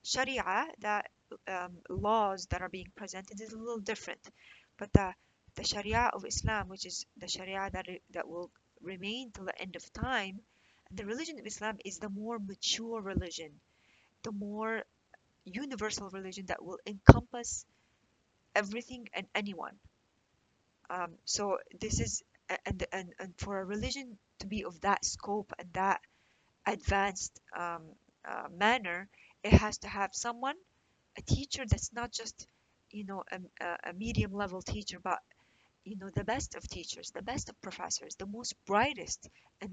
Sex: female